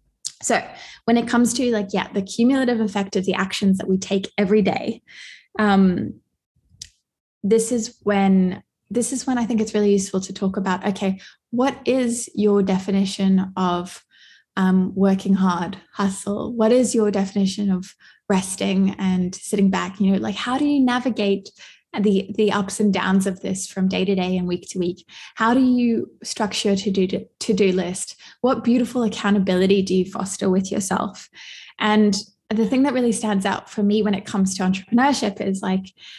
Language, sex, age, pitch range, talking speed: English, female, 20-39, 195-225 Hz, 175 wpm